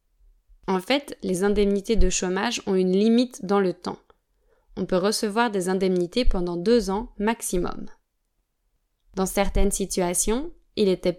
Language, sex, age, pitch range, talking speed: French, female, 20-39, 190-235 Hz, 140 wpm